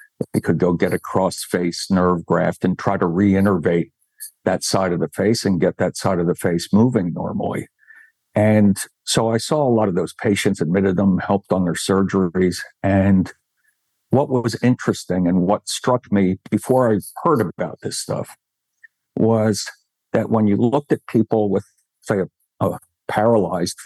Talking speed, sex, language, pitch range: 170 wpm, male, English, 95-115 Hz